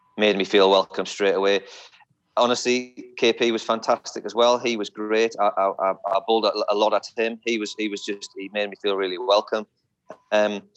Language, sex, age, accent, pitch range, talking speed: English, male, 30-49, British, 100-120 Hz, 195 wpm